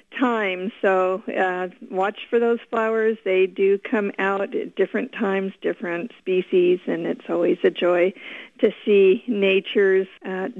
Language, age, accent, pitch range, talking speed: English, 50-69, American, 185-230 Hz, 140 wpm